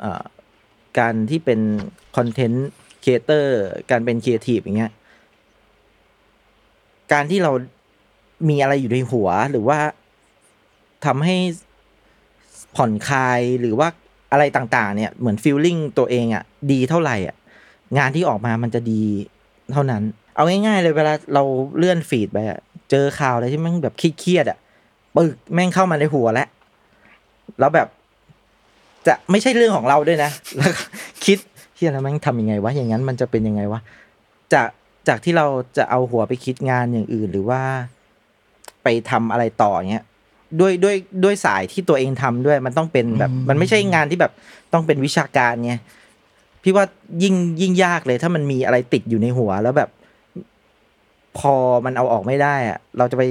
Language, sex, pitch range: Thai, male, 120-160 Hz